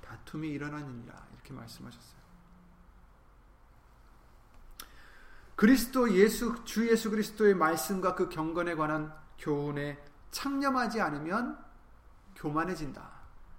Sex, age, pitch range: male, 30-49, 130-180 Hz